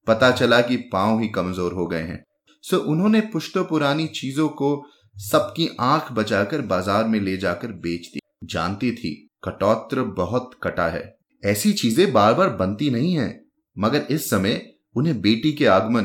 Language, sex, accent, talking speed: Hindi, male, native, 95 wpm